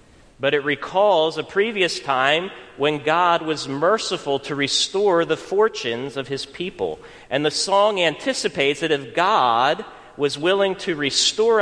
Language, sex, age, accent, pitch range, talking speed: English, male, 40-59, American, 115-165 Hz, 145 wpm